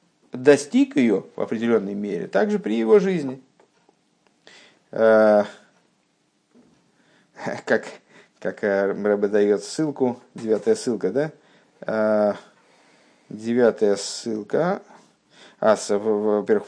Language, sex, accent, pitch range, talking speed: Russian, male, native, 110-140 Hz, 80 wpm